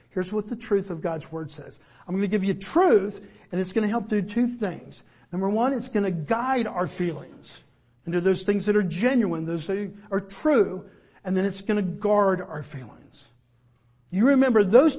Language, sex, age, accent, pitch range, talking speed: English, male, 50-69, American, 160-220 Hz, 210 wpm